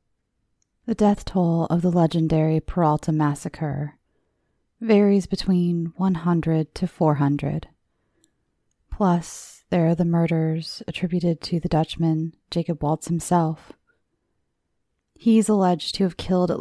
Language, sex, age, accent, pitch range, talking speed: English, female, 20-39, American, 155-185 Hz, 115 wpm